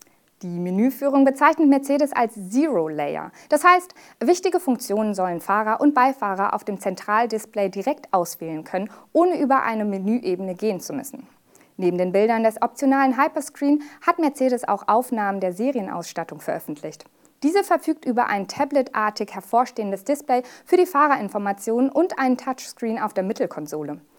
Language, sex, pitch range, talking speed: German, female, 205-290 Hz, 140 wpm